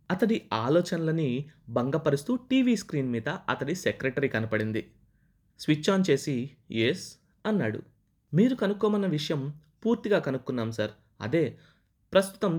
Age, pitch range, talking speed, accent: 20-39, 120-175 Hz, 105 wpm, native